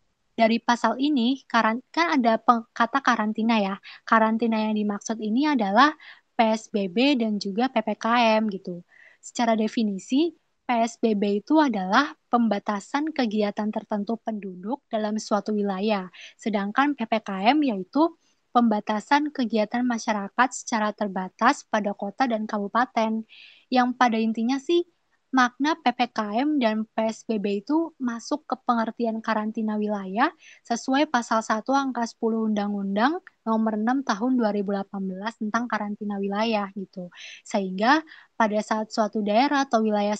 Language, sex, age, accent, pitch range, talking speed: Indonesian, female, 20-39, native, 210-250 Hz, 115 wpm